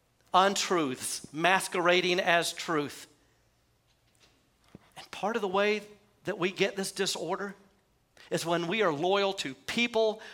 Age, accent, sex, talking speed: 50-69, American, male, 120 wpm